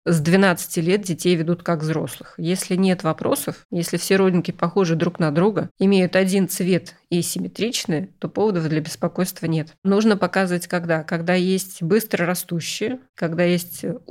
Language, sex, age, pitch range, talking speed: Russian, female, 20-39, 170-190 Hz, 150 wpm